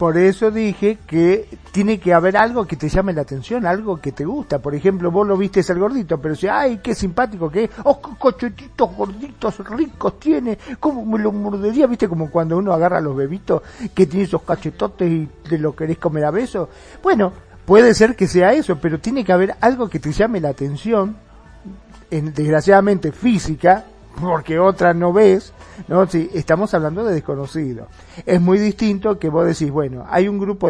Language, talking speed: Spanish, 195 wpm